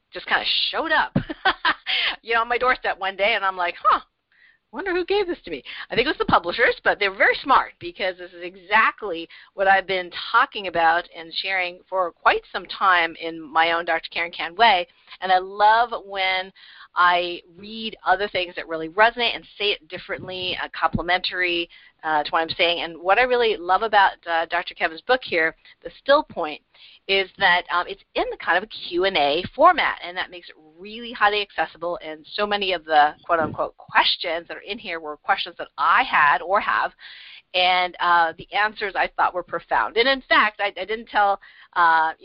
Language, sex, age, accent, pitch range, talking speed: English, female, 40-59, American, 170-230 Hz, 205 wpm